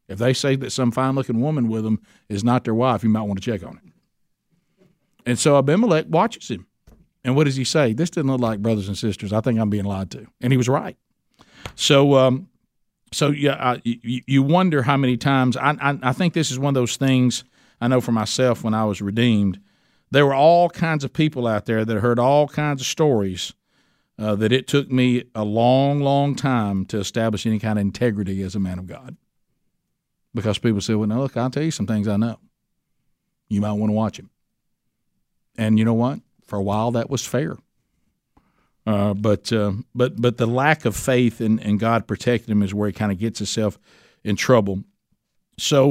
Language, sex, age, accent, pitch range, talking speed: English, male, 50-69, American, 110-135 Hz, 215 wpm